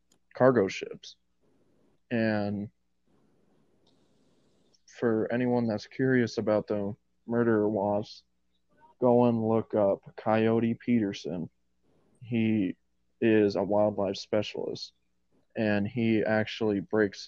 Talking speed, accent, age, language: 90 wpm, American, 20-39, English